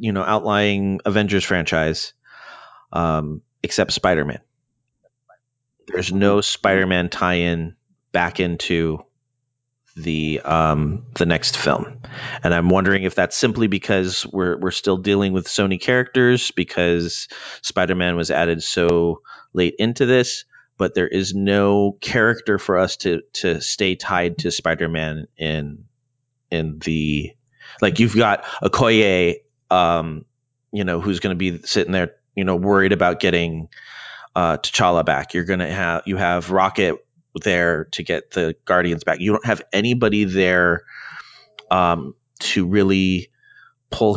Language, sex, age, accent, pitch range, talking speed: English, male, 30-49, American, 85-115 Hz, 140 wpm